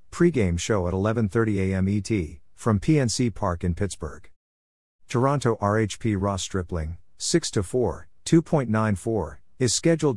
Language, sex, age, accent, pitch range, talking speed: English, male, 50-69, American, 90-115 Hz, 110 wpm